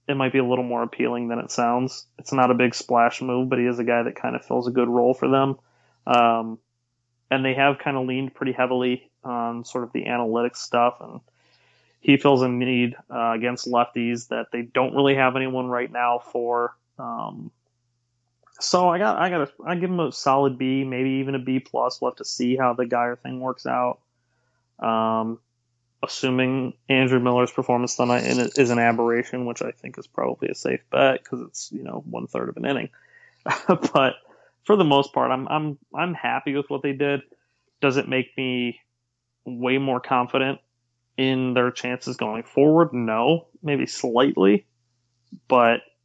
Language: English